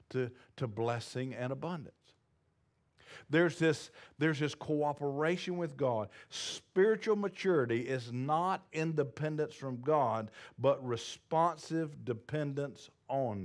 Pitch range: 125-165 Hz